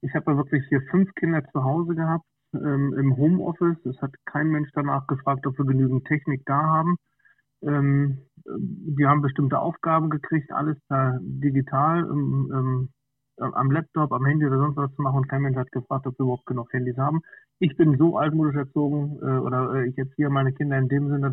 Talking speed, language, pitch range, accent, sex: 205 wpm, German, 130-150 Hz, German, male